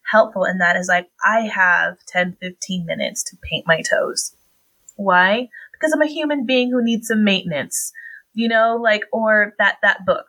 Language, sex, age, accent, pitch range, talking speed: English, female, 20-39, American, 185-240 Hz, 175 wpm